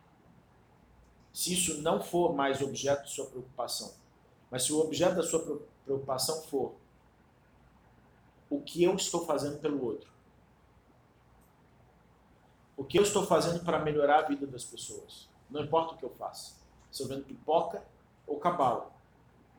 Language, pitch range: Portuguese, 135-175 Hz